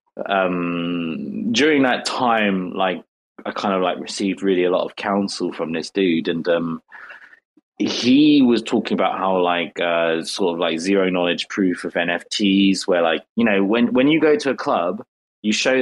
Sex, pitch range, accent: male, 90-110 Hz, British